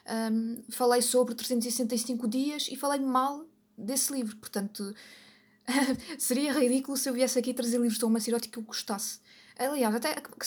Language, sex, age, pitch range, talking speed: Portuguese, female, 20-39, 210-250 Hz, 155 wpm